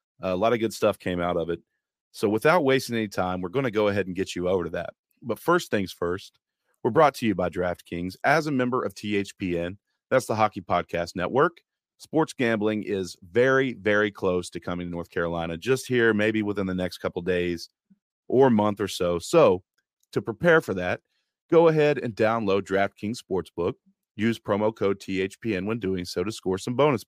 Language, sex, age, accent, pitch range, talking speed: English, male, 40-59, American, 95-135 Hz, 200 wpm